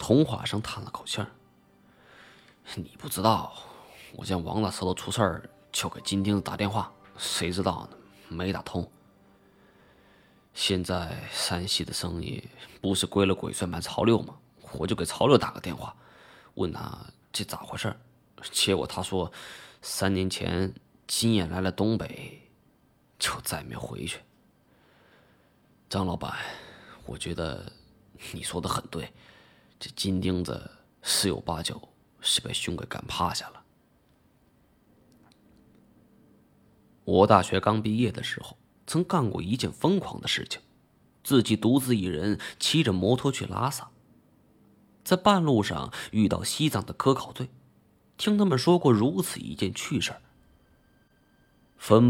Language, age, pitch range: Chinese, 20-39, 95-130 Hz